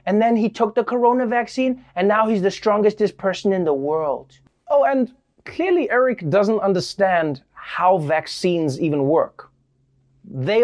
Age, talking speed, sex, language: 30-49, 150 wpm, male, English